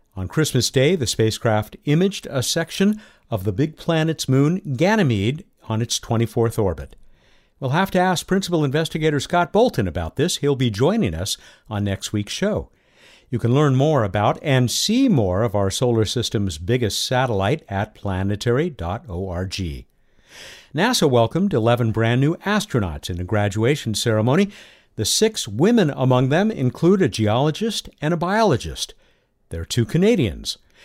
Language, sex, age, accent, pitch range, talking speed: English, male, 60-79, American, 110-165 Hz, 145 wpm